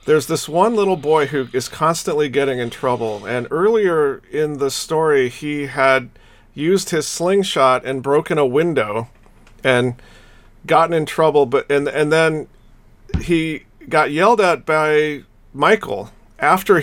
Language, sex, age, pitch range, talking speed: English, male, 40-59, 120-165 Hz, 145 wpm